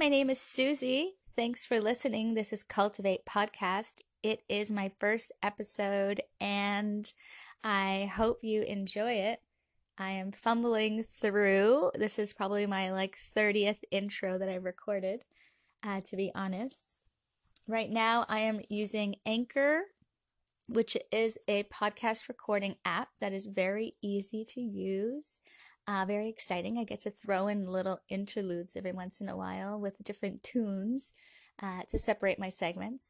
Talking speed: 145 wpm